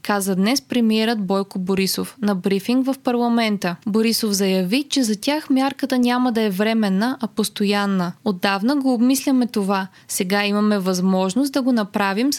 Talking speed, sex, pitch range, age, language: 150 wpm, female, 200-250 Hz, 20-39, Bulgarian